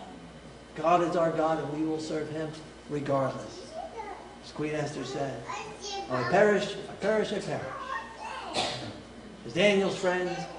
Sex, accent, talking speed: male, American, 130 wpm